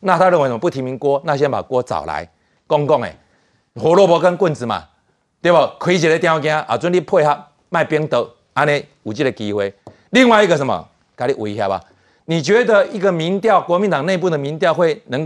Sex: male